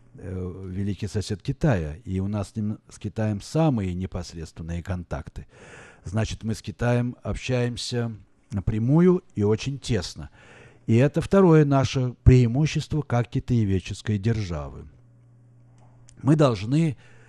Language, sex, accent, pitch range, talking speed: Russian, male, native, 105-140 Hz, 110 wpm